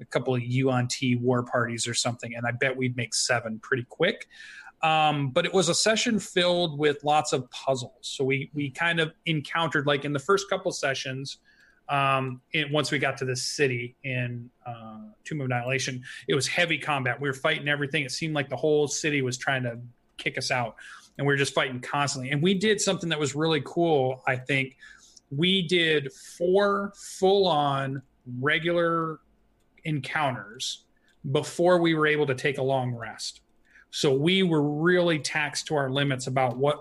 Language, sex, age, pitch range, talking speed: English, male, 30-49, 130-155 Hz, 190 wpm